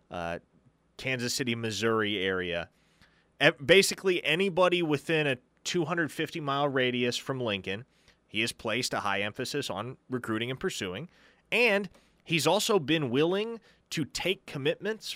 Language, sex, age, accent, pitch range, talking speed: English, male, 30-49, American, 125-165 Hz, 125 wpm